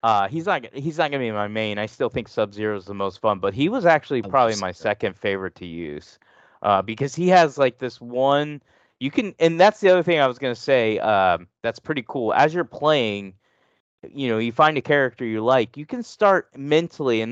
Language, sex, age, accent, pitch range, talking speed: English, male, 30-49, American, 110-150 Hz, 230 wpm